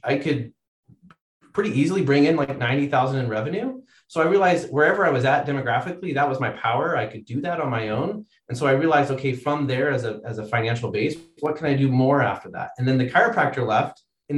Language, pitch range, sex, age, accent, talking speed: English, 120-145 Hz, male, 30-49, American, 225 wpm